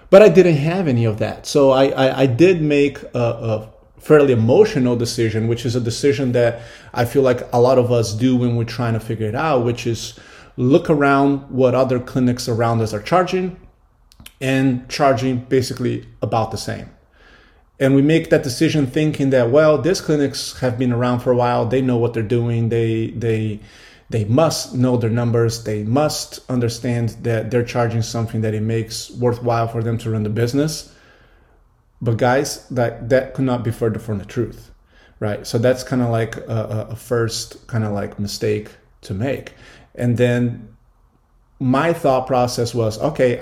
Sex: male